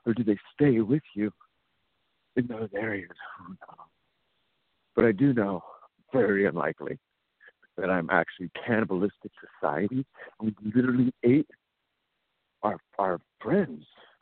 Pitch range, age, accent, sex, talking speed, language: 105-130 Hz, 60-79, American, male, 120 wpm, English